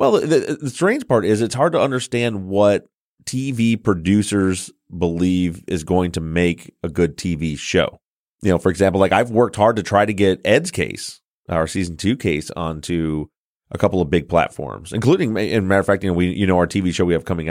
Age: 30-49